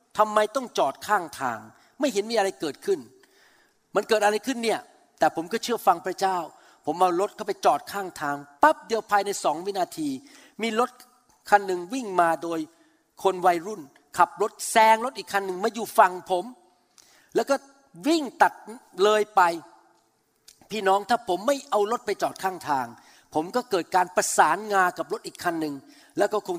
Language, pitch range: Thai, 180-265 Hz